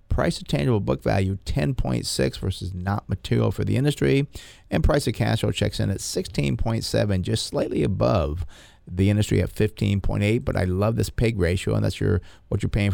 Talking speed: 185 wpm